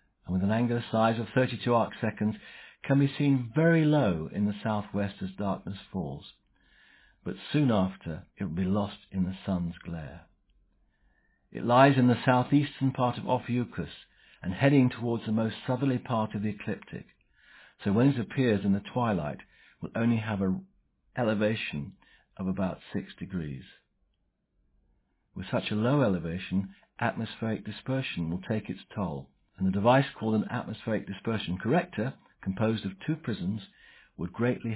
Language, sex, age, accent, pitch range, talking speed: English, male, 60-79, British, 95-130 Hz, 155 wpm